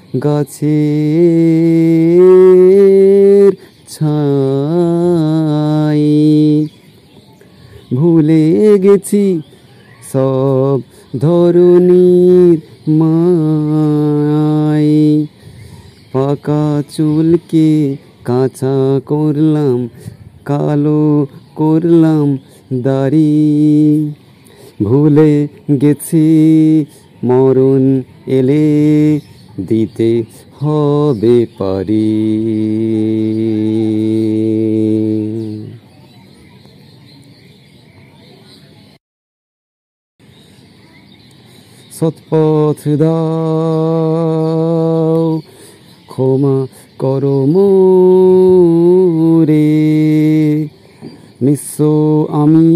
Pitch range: 135-160 Hz